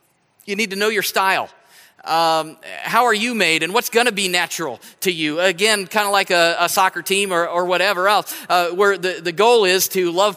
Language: English